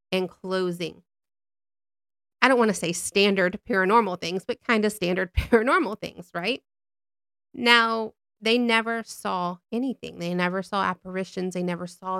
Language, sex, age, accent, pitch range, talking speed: English, female, 30-49, American, 175-215 Hz, 145 wpm